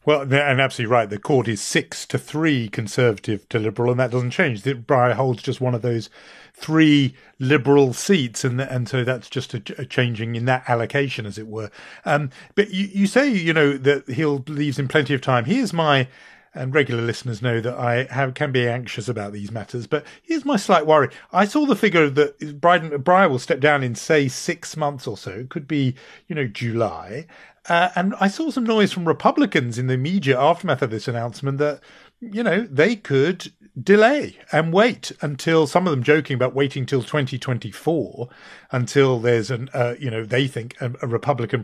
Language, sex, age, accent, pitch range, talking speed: English, male, 40-59, British, 125-165 Hz, 195 wpm